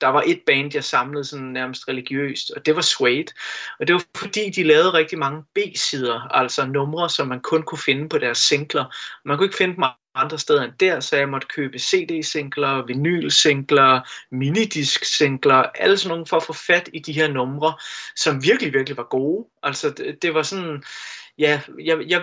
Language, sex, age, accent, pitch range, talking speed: Danish, male, 30-49, native, 140-215 Hz, 200 wpm